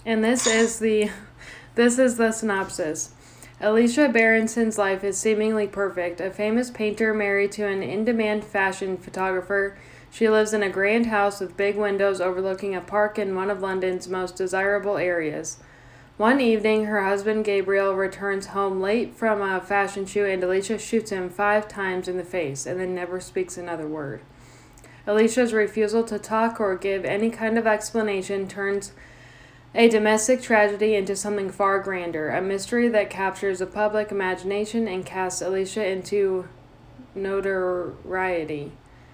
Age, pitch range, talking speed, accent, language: 10-29, 185-215 Hz, 150 wpm, American, English